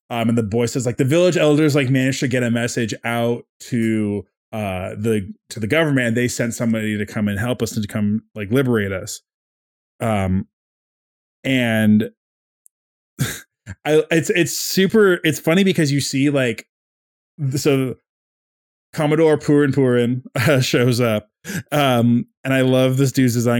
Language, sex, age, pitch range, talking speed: English, male, 20-39, 110-140 Hz, 160 wpm